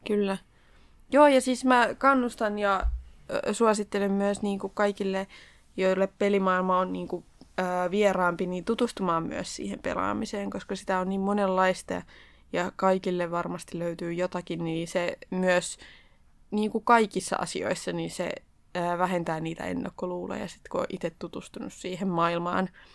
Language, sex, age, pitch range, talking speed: Finnish, female, 20-39, 175-205 Hz, 140 wpm